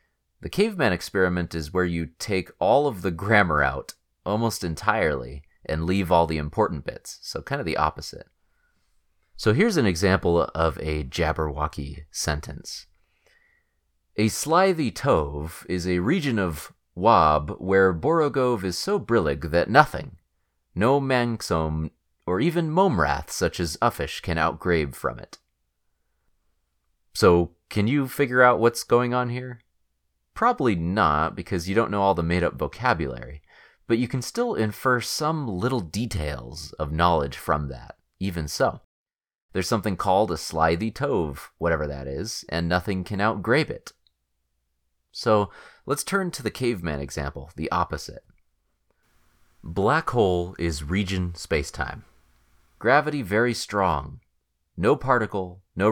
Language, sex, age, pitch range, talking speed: English, male, 30-49, 75-110 Hz, 135 wpm